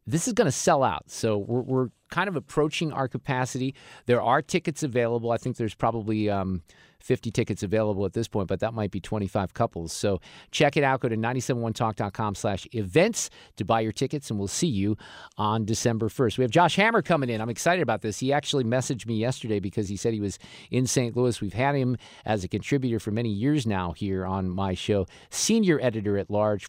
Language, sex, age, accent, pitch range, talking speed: English, male, 50-69, American, 105-140 Hz, 210 wpm